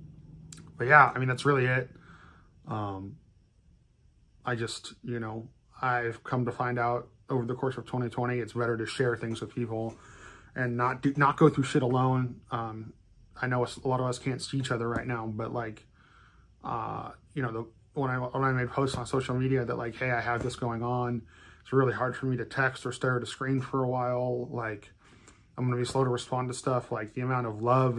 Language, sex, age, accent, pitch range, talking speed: English, male, 20-39, American, 115-130 Hz, 220 wpm